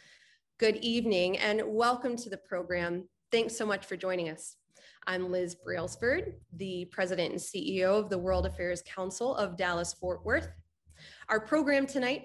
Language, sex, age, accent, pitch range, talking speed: English, female, 20-39, American, 185-240 Hz, 150 wpm